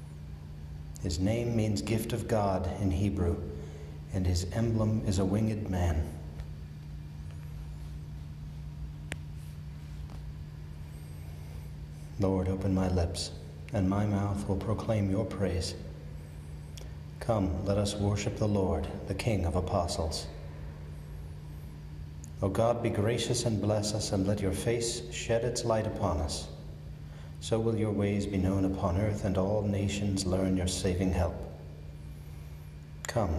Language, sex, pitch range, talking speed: English, male, 75-100 Hz, 120 wpm